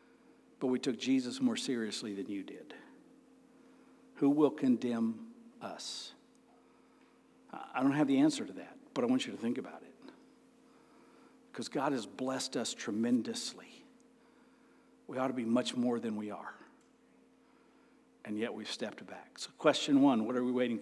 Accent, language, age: American, English, 60-79